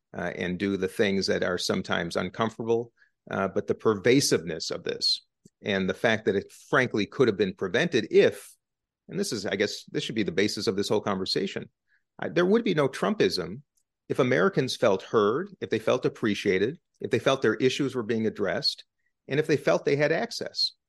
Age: 40-59